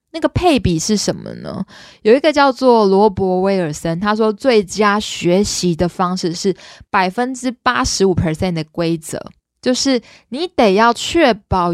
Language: Chinese